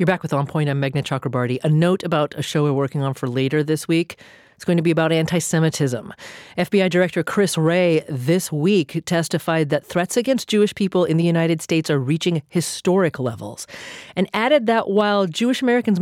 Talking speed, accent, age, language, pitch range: 195 wpm, American, 40-59, English, 140-185 Hz